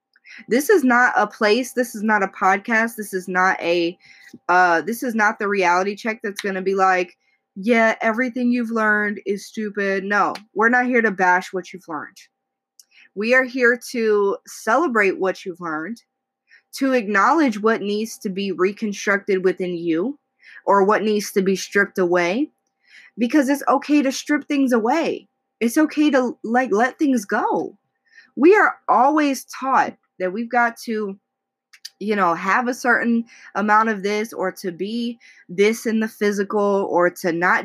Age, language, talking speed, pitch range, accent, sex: 20-39, English, 165 wpm, 190-255 Hz, American, female